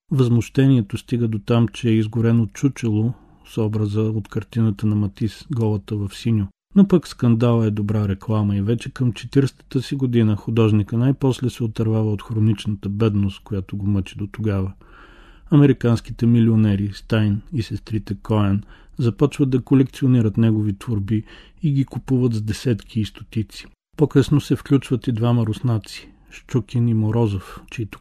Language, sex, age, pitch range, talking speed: Bulgarian, male, 40-59, 105-120 Hz, 150 wpm